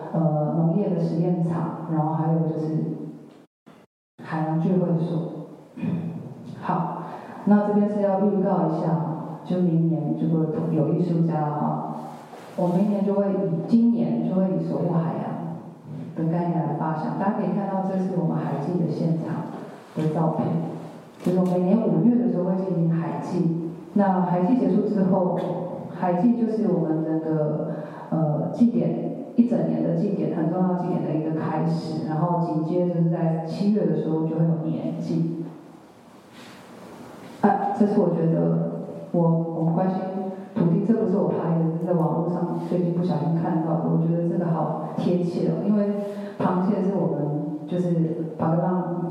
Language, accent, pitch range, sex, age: Chinese, native, 160-185 Hz, female, 30-49